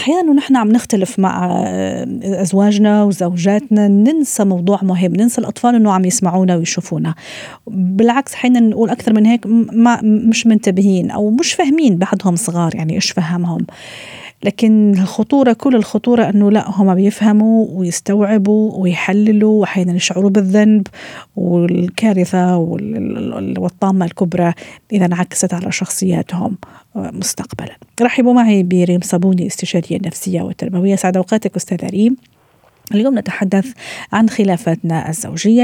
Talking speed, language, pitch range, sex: 120 wpm, Arabic, 180-230 Hz, female